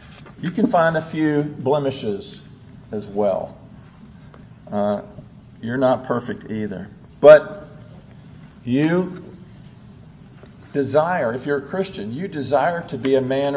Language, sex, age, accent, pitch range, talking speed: English, male, 50-69, American, 130-185 Hz, 115 wpm